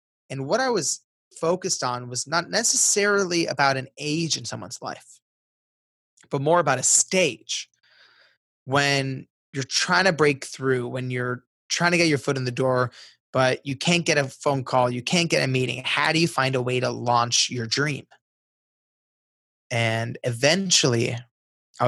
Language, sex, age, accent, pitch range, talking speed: English, male, 20-39, American, 125-155 Hz, 165 wpm